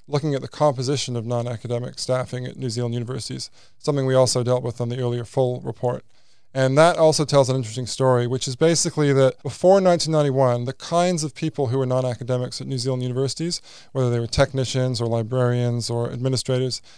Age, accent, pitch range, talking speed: 20-39, American, 130-150 Hz, 185 wpm